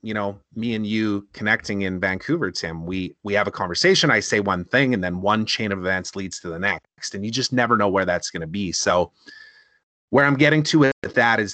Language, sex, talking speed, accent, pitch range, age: English, male, 240 wpm, American, 100-145 Hz, 30-49